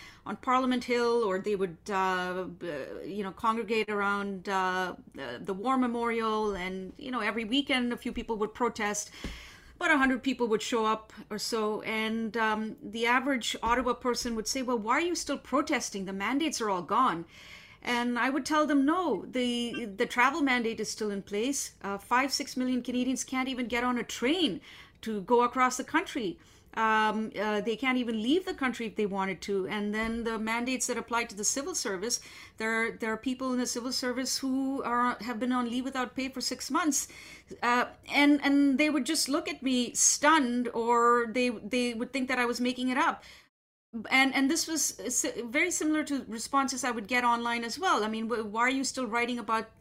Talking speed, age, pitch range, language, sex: 200 wpm, 30-49, 220-265 Hz, English, female